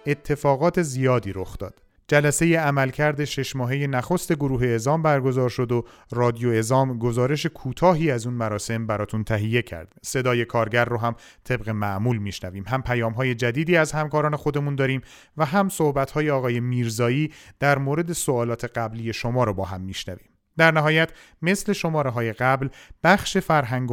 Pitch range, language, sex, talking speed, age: 115-150 Hz, Persian, male, 155 wpm, 40-59